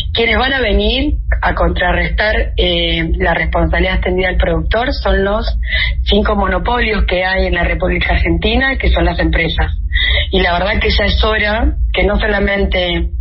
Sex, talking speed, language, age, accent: female, 165 wpm, Spanish, 30-49, Argentinian